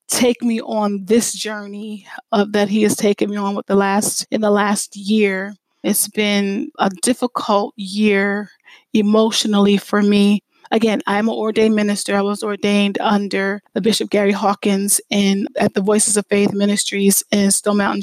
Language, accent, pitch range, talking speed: English, American, 200-215 Hz, 165 wpm